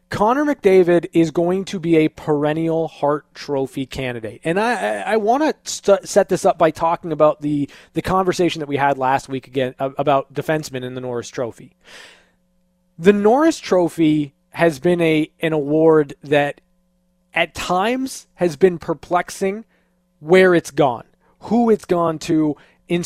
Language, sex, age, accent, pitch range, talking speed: English, male, 20-39, American, 145-190 Hz, 155 wpm